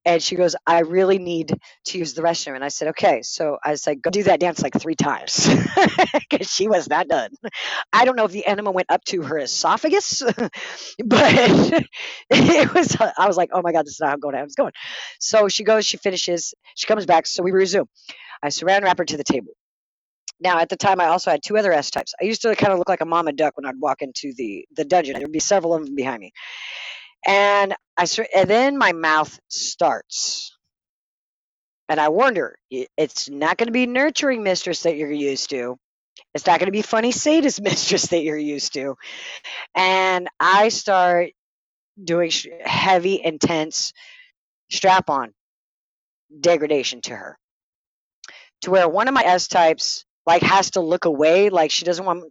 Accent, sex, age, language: American, female, 40-59, English